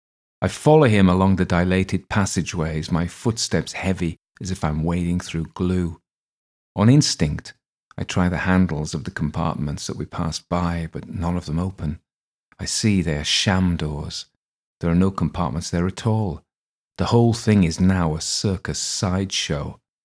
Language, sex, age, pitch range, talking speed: English, male, 40-59, 80-95 Hz, 165 wpm